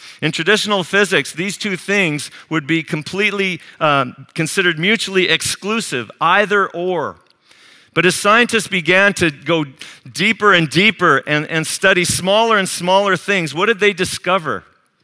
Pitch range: 155-195 Hz